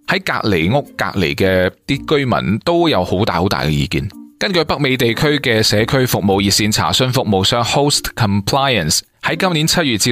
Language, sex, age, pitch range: Chinese, male, 20-39, 95-135 Hz